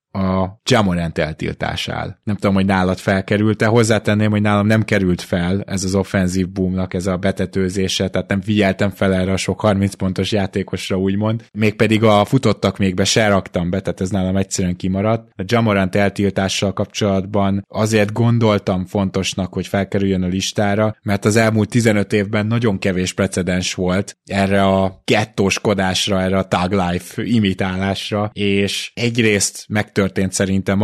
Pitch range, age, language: 95-110 Hz, 20-39, Hungarian